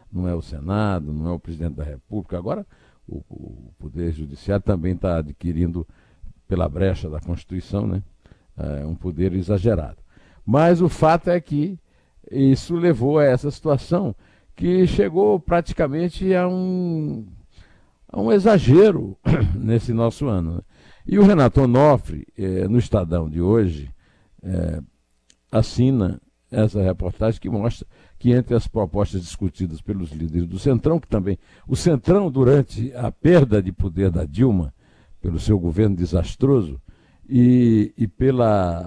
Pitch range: 85-120 Hz